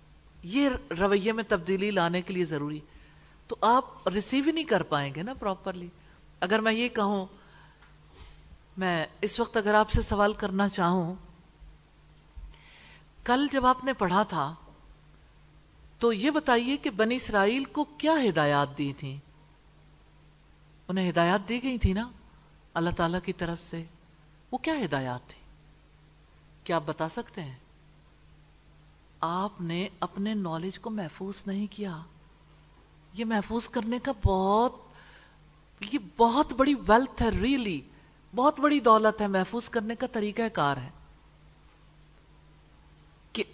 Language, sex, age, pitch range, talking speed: English, female, 50-69, 150-235 Hz, 130 wpm